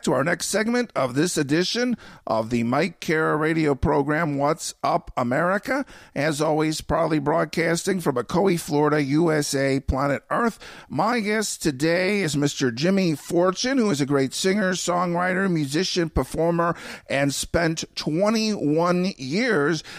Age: 50-69